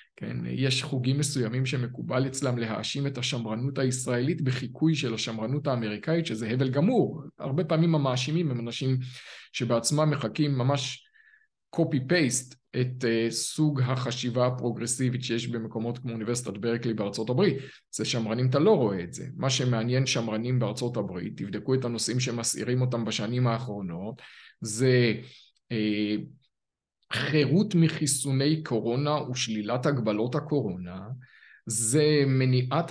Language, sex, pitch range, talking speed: Hebrew, male, 120-150 Hz, 120 wpm